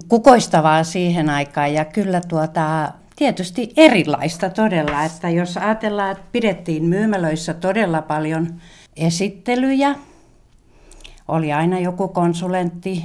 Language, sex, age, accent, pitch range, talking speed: Finnish, female, 60-79, native, 160-200 Hz, 100 wpm